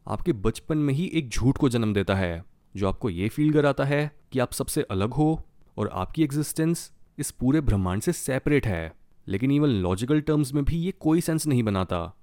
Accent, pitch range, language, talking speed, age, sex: native, 110-150 Hz, Hindi, 200 wpm, 30-49, male